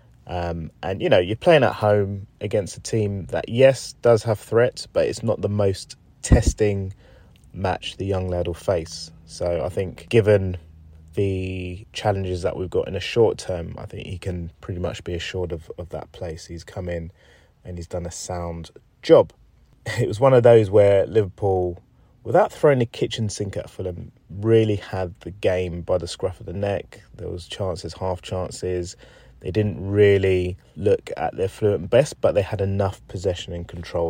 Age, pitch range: 30-49, 85-105 Hz